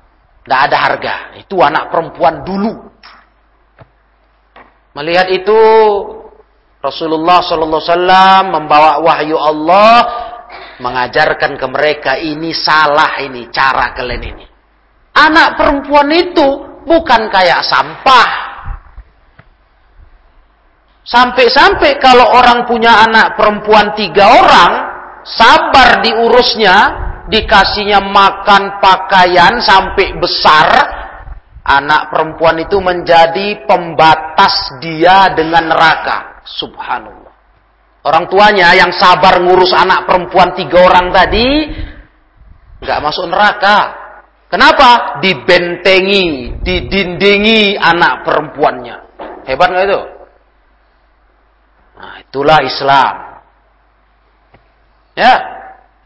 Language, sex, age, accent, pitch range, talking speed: Indonesian, male, 40-59, native, 160-215 Hz, 85 wpm